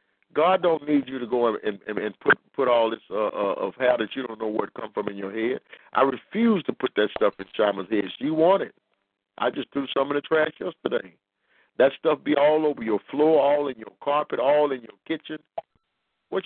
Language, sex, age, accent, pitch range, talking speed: English, male, 50-69, American, 115-145 Hz, 235 wpm